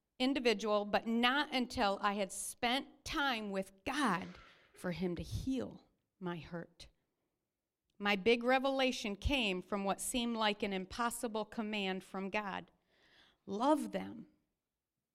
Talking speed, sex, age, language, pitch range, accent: 125 wpm, female, 50-69, English, 200-275 Hz, American